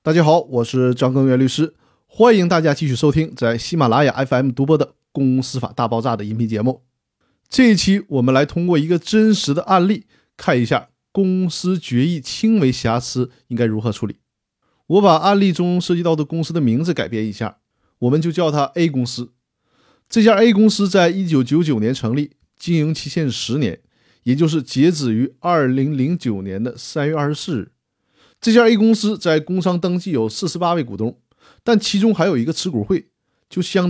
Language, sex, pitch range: Chinese, male, 125-175 Hz